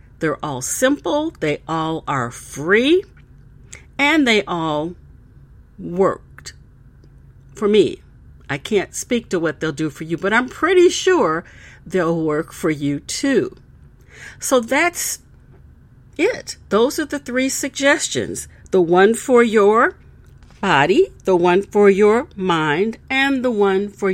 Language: English